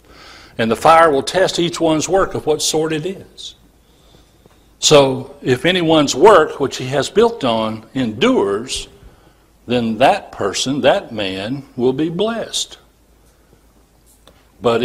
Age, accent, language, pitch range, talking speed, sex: 60-79, American, English, 125-160 Hz, 130 wpm, male